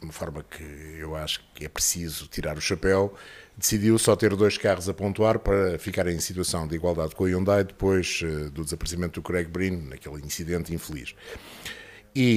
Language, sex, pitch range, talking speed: Portuguese, male, 90-120 Hz, 185 wpm